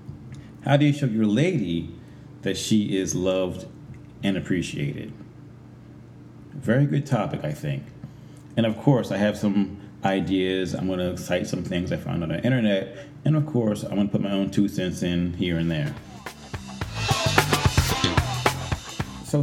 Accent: American